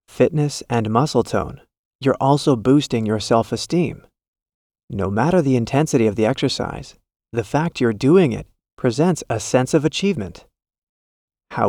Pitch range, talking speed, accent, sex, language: 110-135 Hz, 140 wpm, American, male, English